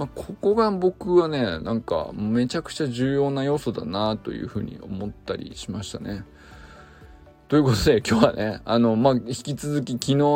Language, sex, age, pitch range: Japanese, male, 20-39, 110-150 Hz